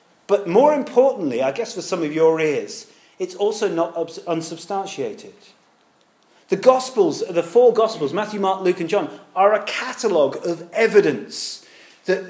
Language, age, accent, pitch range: English, 40-59, British, 165-245 Hz